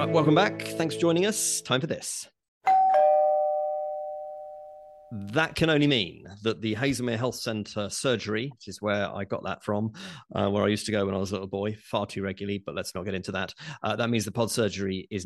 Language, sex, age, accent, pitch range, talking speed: English, male, 40-59, British, 100-150 Hz, 210 wpm